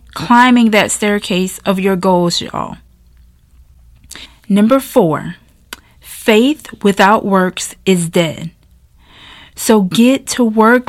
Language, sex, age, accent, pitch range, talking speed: English, female, 30-49, American, 180-225 Hz, 100 wpm